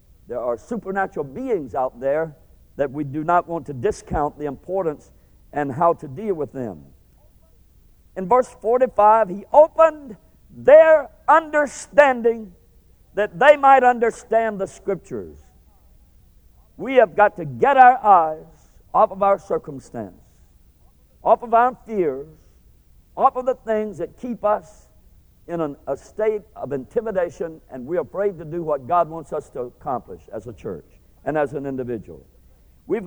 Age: 60-79